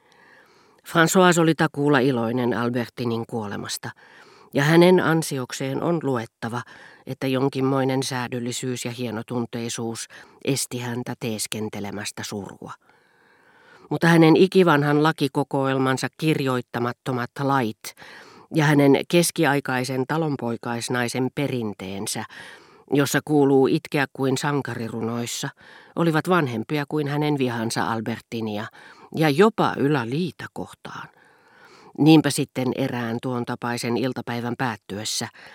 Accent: native